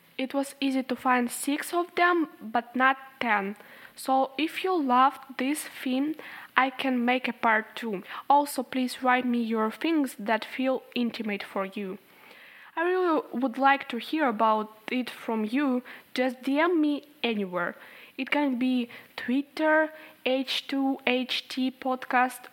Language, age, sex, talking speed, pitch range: English, 20-39, female, 145 wpm, 230-280 Hz